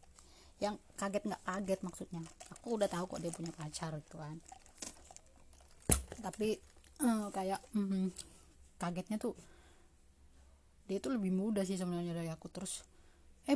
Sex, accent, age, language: female, native, 20-39, Indonesian